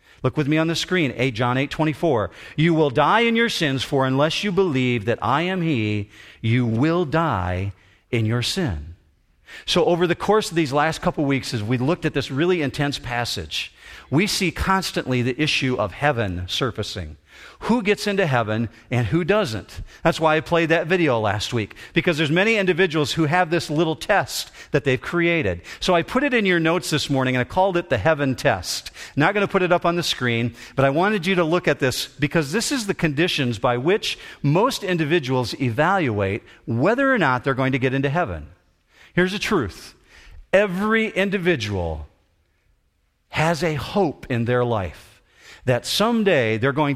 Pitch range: 120-175 Hz